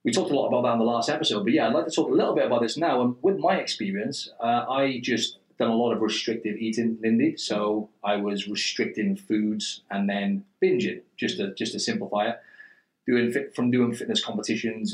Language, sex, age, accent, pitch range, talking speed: English, male, 30-49, British, 105-120 Hz, 220 wpm